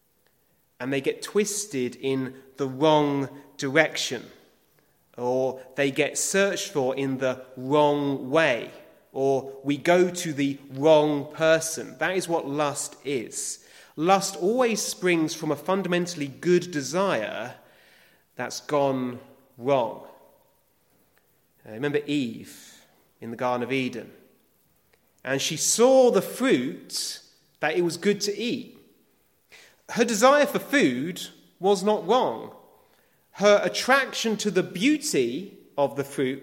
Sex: male